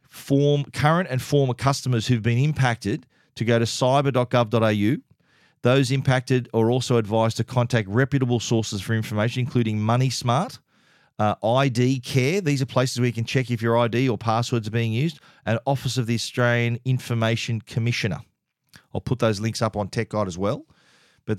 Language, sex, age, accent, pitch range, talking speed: English, male, 40-59, Australian, 110-130 Hz, 175 wpm